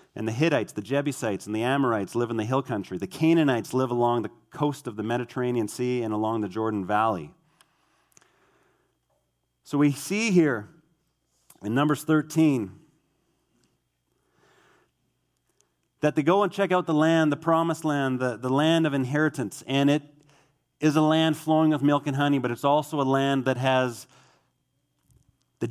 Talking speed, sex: 160 wpm, male